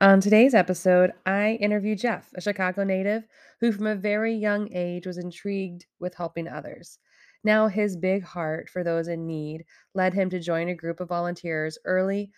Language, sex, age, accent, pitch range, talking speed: English, female, 20-39, American, 165-195 Hz, 180 wpm